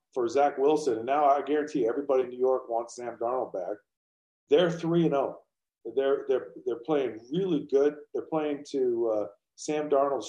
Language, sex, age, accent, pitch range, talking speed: English, male, 40-59, American, 115-170 Hz, 185 wpm